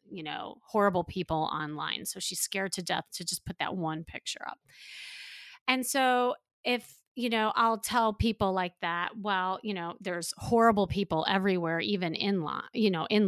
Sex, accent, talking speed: female, American, 180 wpm